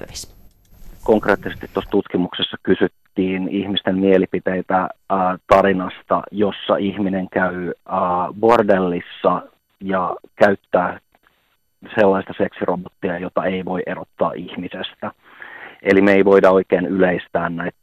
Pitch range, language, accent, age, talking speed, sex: 90-100 Hz, Finnish, native, 30-49, 100 wpm, male